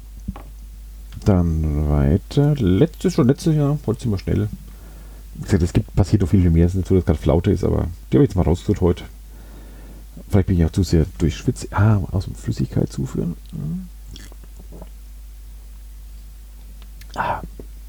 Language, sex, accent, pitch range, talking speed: German, male, German, 80-115 Hz, 150 wpm